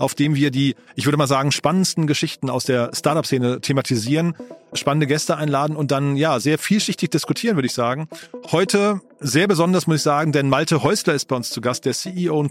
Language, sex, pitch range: German, male, 140-165 Hz